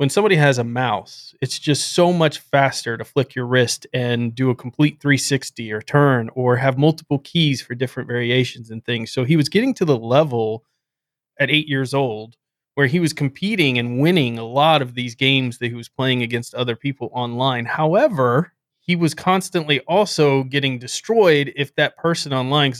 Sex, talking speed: male, 185 wpm